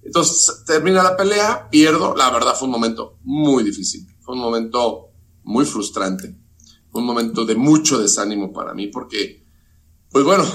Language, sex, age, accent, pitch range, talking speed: Spanish, male, 40-59, Mexican, 115-160 Hz, 160 wpm